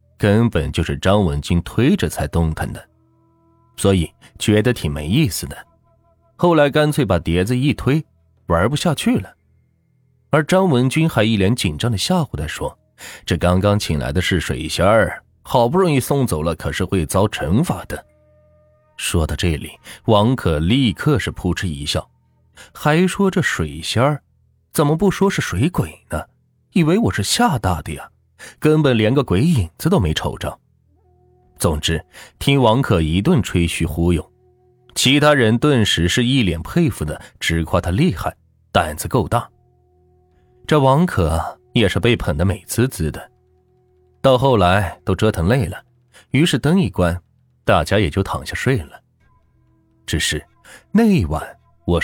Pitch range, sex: 85-130 Hz, male